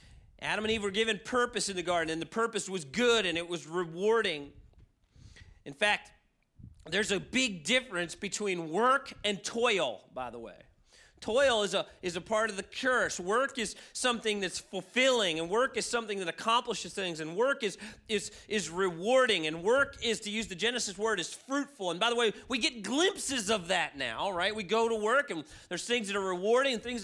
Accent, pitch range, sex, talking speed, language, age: American, 170-225 Hz, male, 195 wpm, English, 40-59